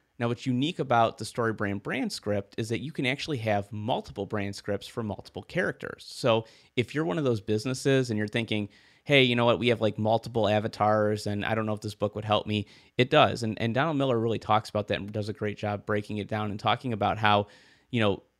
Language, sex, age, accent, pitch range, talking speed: English, male, 30-49, American, 105-125 Hz, 240 wpm